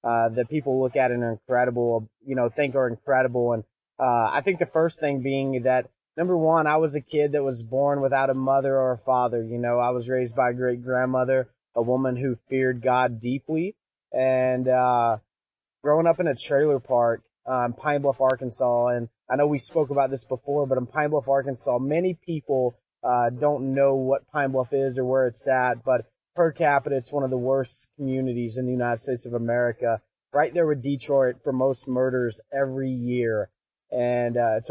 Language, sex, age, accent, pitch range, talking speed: English, male, 20-39, American, 120-140 Hz, 205 wpm